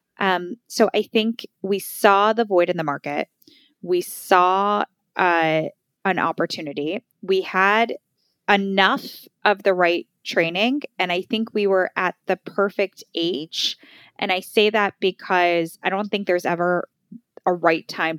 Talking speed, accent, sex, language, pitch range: 150 wpm, American, female, English, 170-220 Hz